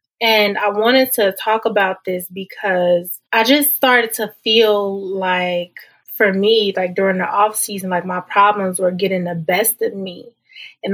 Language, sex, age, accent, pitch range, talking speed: English, female, 20-39, American, 185-220 Hz, 170 wpm